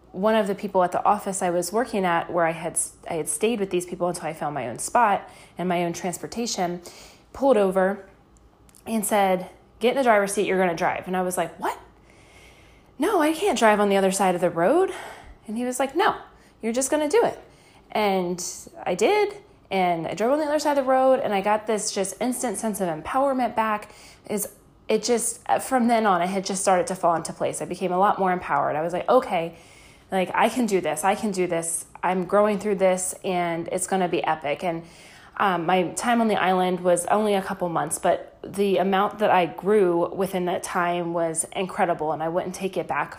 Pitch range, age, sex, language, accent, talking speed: 175-230 Hz, 20-39, female, English, American, 230 wpm